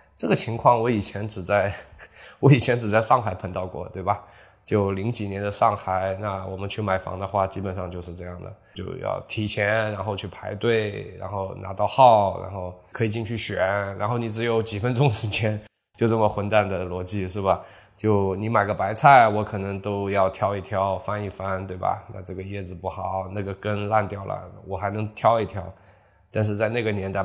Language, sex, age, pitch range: Chinese, male, 20-39, 100-120 Hz